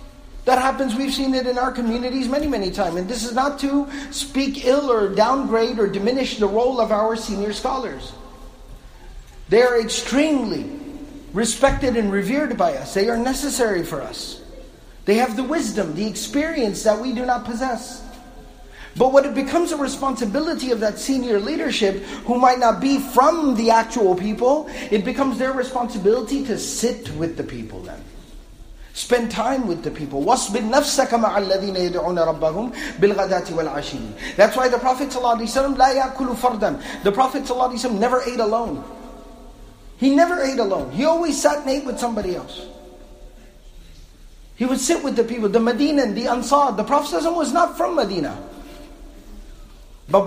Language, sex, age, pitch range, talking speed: English, male, 40-59, 210-270 Hz, 145 wpm